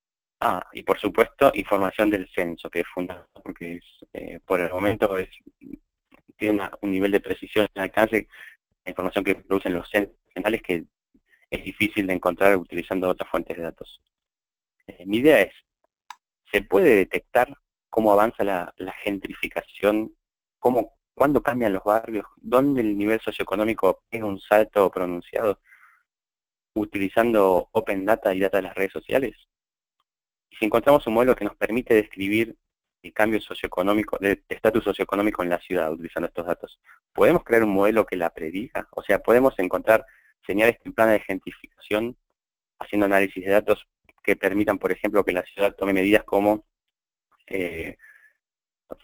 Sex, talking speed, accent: male, 155 wpm, Argentinian